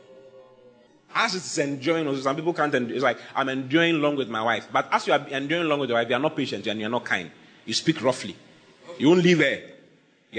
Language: English